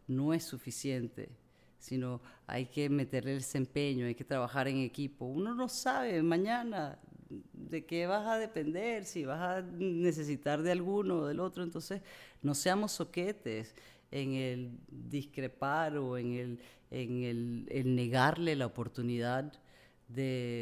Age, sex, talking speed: 30-49, female, 145 wpm